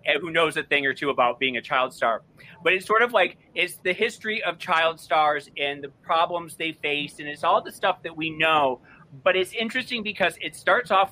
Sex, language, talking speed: male, English, 225 wpm